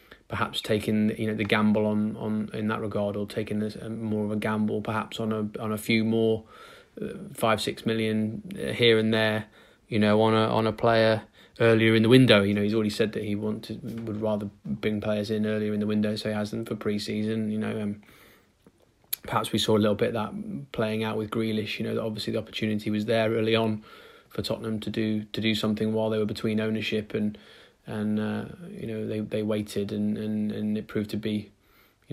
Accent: British